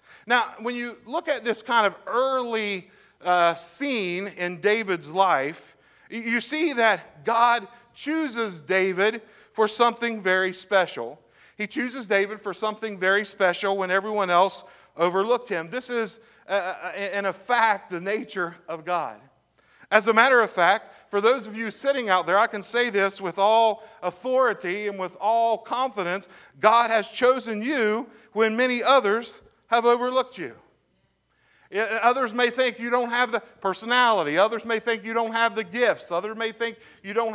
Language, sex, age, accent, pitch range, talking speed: English, male, 40-59, American, 195-240 Hz, 160 wpm